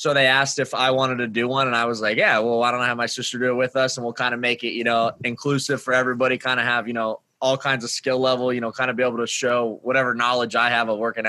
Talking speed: 320 wpm